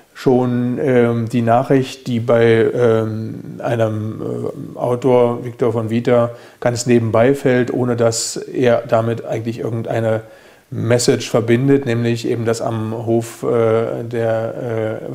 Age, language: 40-59, German